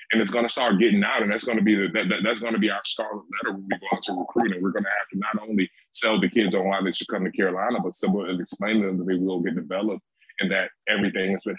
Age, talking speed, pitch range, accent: 20-39, 305 wpm, 95-110 Hz, American